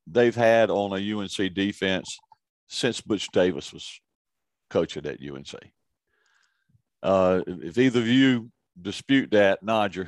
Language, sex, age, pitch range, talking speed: English, male, 50-69, 95-125 Hz, 130 wpm